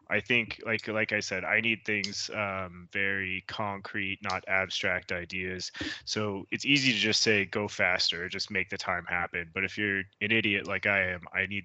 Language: English